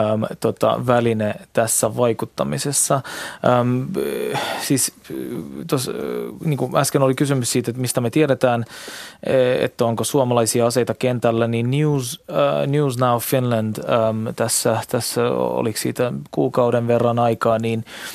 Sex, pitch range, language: male, 110-130 Hz, Finnish